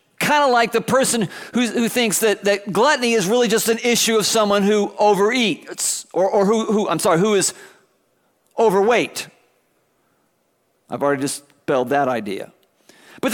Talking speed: 160 wpm